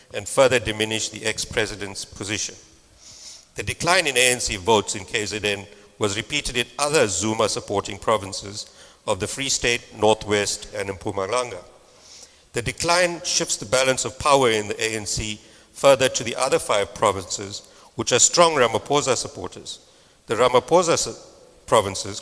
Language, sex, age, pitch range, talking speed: English, male, 60-79, 105-130 Hz, 135 wpm